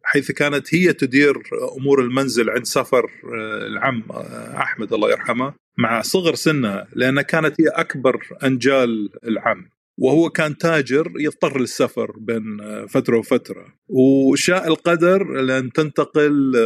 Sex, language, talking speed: male, Arabic, 120 wpm